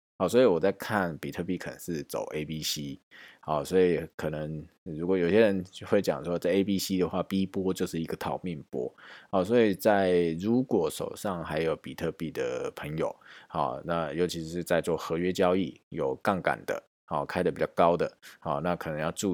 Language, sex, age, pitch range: Chinese, male, 20-39, 80-95 Hz